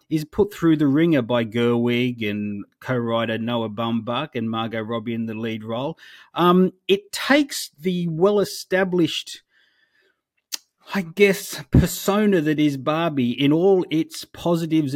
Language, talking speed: English, 130 wpm